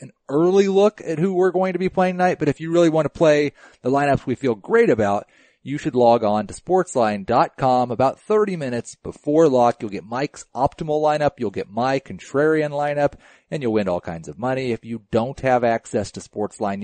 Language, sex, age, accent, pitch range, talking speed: English, male, 40-59, American, 110-155 Hz, 210 wpm